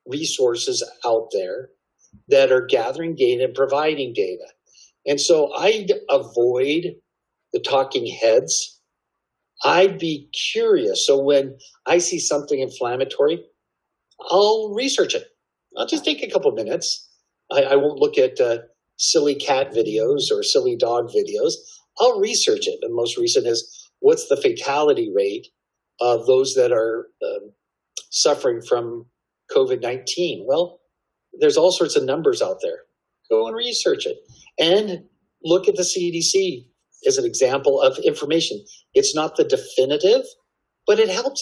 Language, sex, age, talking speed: English, male, 50-69, 140 wpm